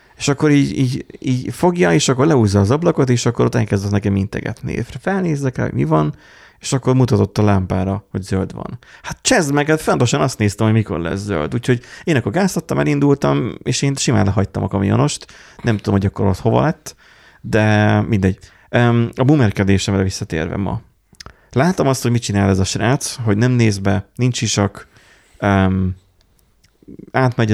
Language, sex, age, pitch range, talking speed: Hungarian, male, 30-49, 100-125 Hz, 170 wpm